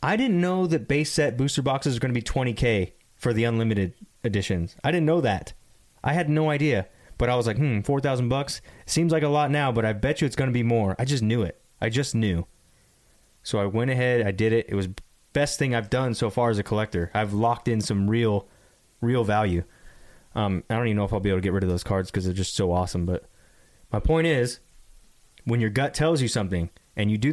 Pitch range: 100-135 Hz